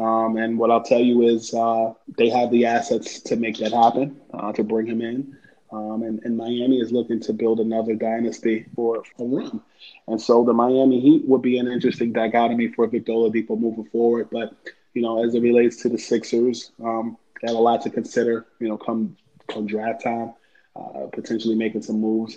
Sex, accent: male, American